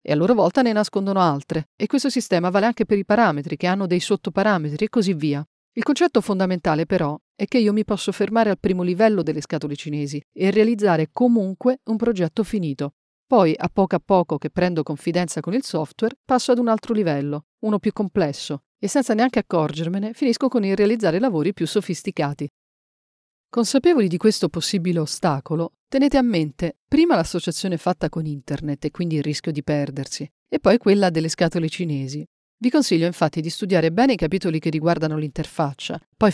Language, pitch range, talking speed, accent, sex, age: Italian, 155-210 Hz, 185 wpm, native, female, 40-59